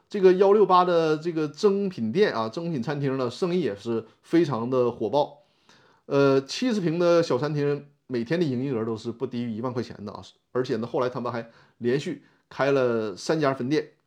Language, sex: Chinese, male